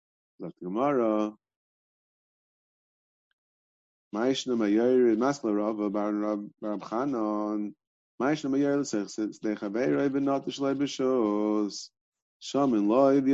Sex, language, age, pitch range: male, English, 30-49, 105-140 Hz